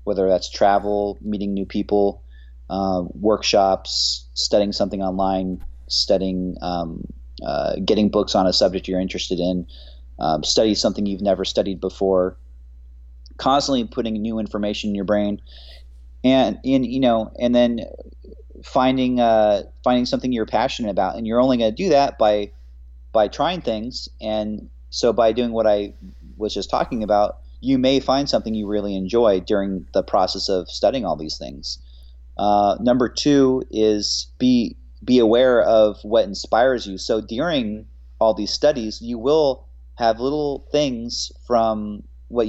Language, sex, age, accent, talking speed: English, male, 30-49, American, 155 wpm